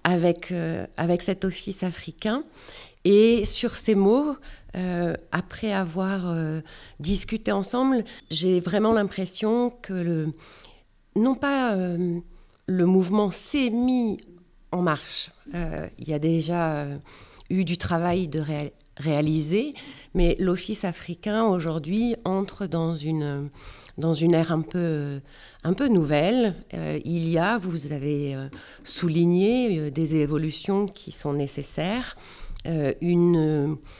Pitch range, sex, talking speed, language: 150-195 Hz, female, 125 wpm, French